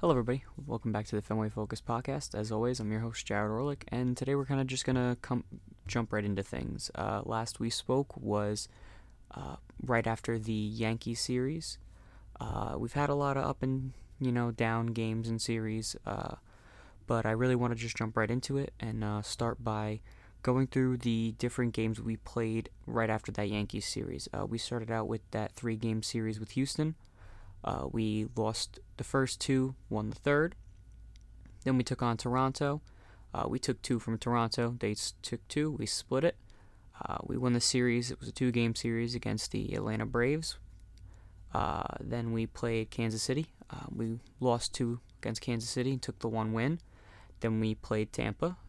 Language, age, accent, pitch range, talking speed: English, 20-39, American, 105-125 Hz, 190 wpm